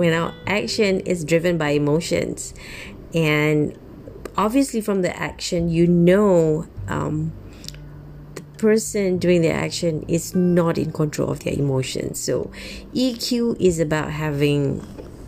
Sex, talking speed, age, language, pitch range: female, 125 wpm, 30-49, English, 145-195 Hz